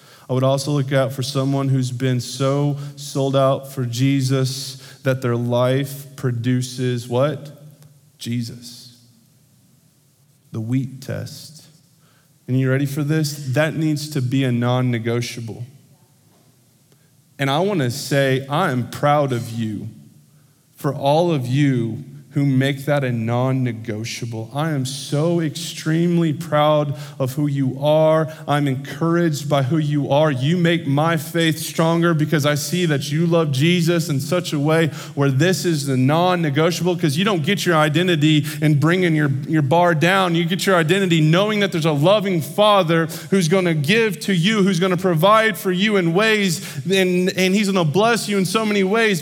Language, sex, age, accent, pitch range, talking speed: English, male, 20-39, American, 135-170 Hz, 165 wpm